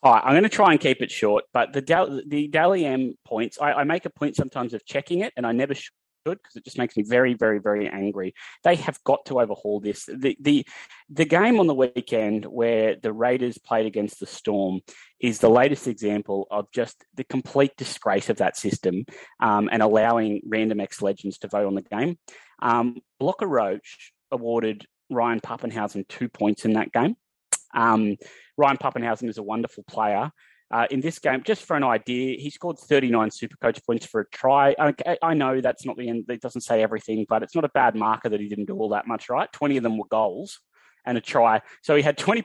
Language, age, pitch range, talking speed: English, 20-39, 110-140 Hz, 215 wpm